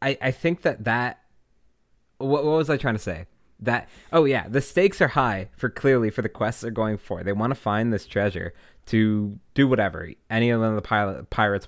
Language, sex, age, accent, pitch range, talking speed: English, male, 20-39, American, 100-130 Hz, 200 wpm